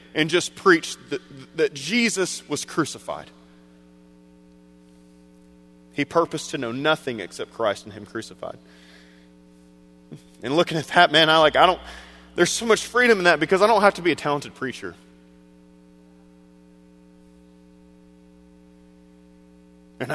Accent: American